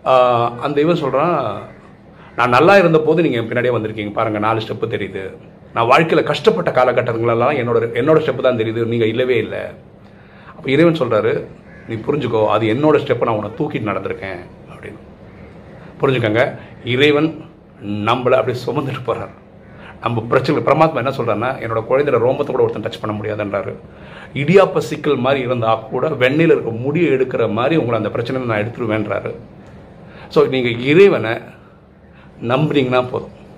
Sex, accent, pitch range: male, native, 110-150 Hz